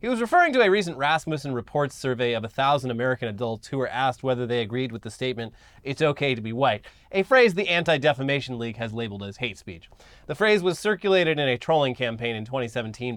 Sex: male